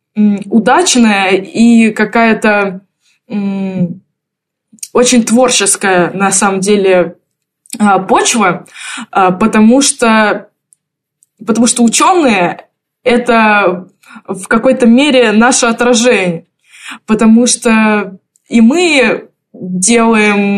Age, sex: 20-39, female